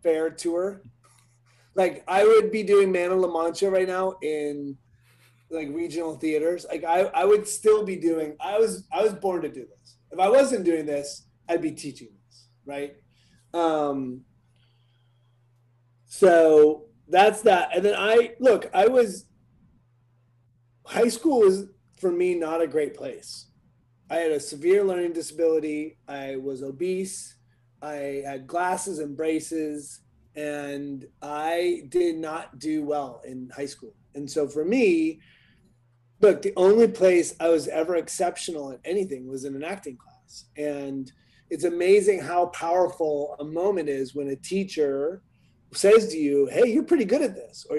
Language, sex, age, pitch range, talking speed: English, male, 30-49, 135-180 Hz, 155 wpm